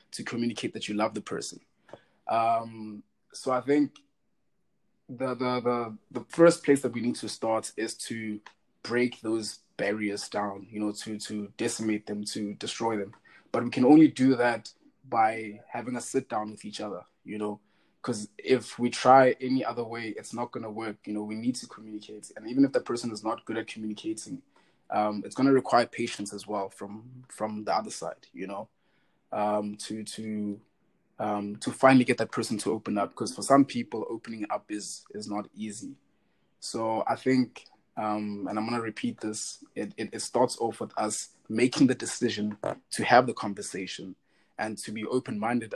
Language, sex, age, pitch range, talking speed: English, male, 20-39, 105-125 Hz, 190 wpm